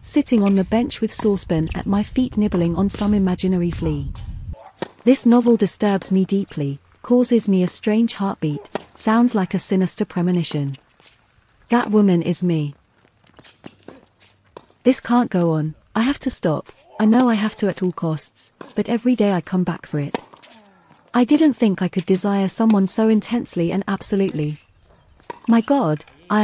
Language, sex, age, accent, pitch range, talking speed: Italian, female, 40-59, British, 170-225 Hz, 160 wpm